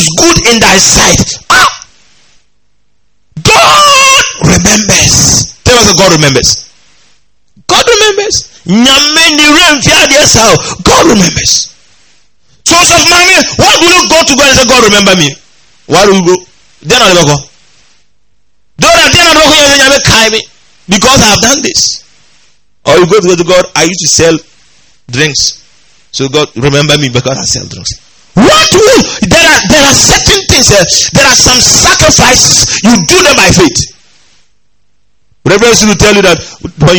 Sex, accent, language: male, Nigerian, English